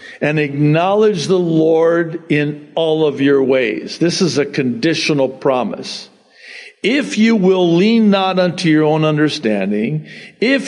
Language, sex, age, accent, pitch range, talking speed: English, male, 60-79, American, 115-185 Hz, 135 wpm